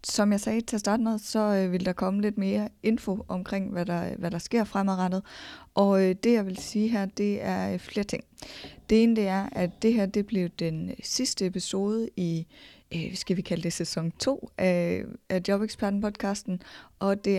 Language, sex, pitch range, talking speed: Danish, female, 185-210 Hz, 190 wpm